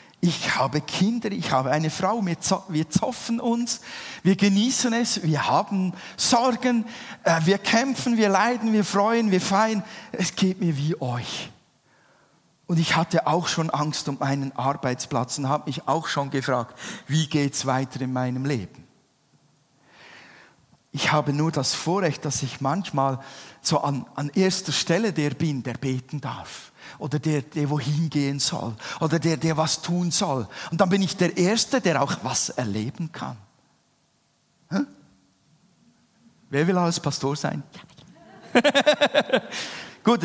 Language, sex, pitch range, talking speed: German, male, 135-180 Hz, 150 wpm